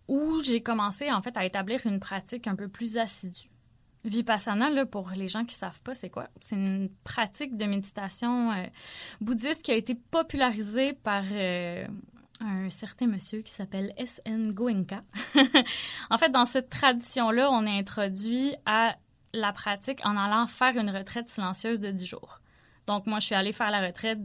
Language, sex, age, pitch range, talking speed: French, female, 20-39, 195-235 Hz, 180 wpm